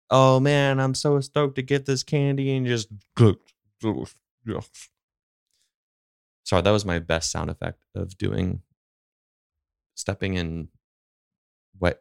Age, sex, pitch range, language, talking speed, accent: 20-39, male, 85-130 Hz, English, 115 wpm, American